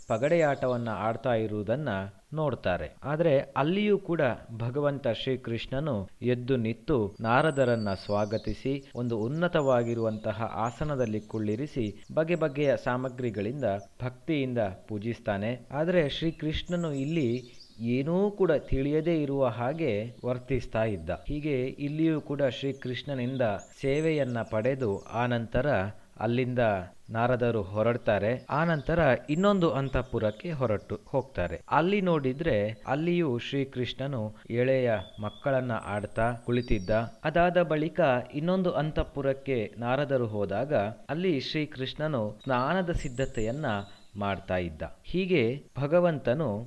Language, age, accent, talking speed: Kannada, 30-49, native, 85 wpm